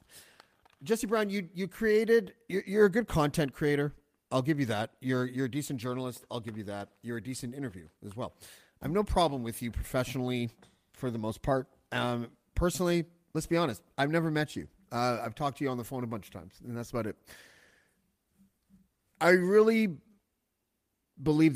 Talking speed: 190 wpm